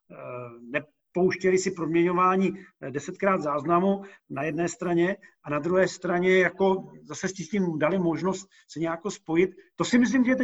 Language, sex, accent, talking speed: Czech, male, native, 150 wpm